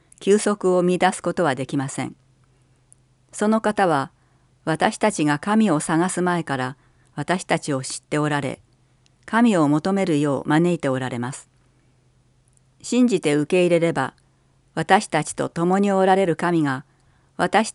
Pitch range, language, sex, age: 130-185 Hz, Japanese, female, 50-69